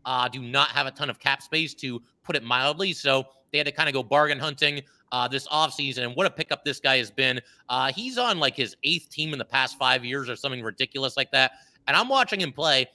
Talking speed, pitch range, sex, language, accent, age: 255 wpm, 130-155 Hz, male, English, American, 30-49